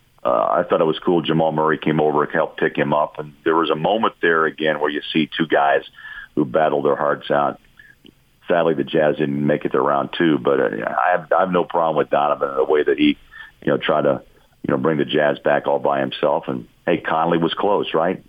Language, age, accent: English, 50-69, American